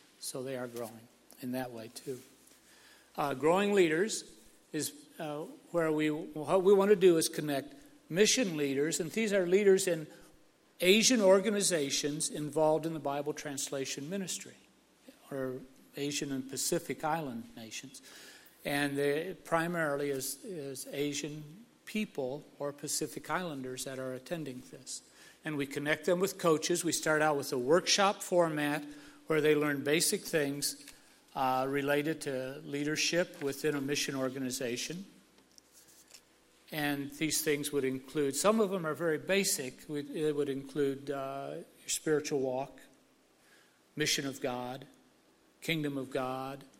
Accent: American